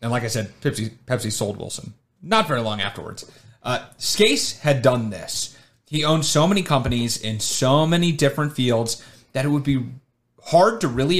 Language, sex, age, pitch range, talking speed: English, male, 30-49, 115-150 Hz, 180 wpm